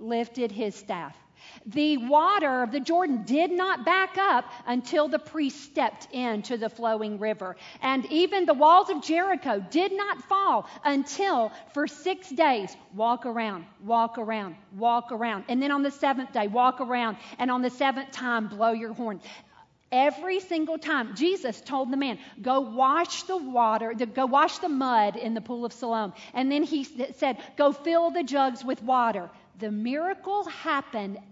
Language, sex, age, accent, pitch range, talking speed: English, female, 50-69, American, 235-345 Hz, 170 wpm